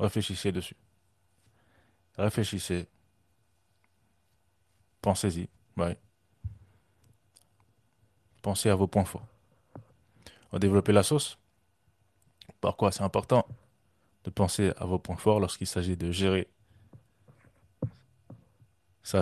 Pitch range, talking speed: 95-110 Hz, 85 wpm